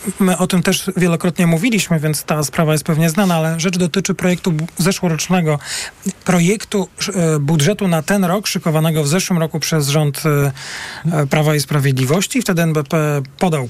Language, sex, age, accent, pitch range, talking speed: Polish, male, 40-59, native, 155-195 Hz, 150 wpm